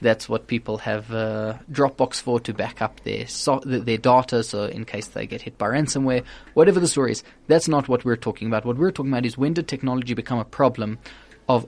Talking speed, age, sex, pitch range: 225 wpm, 20-39, male, 115-135 Hz